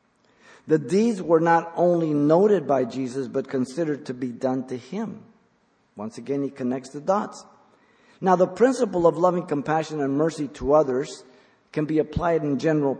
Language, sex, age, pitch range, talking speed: English, male, 50-69, 140-185 Hz, 165 wpm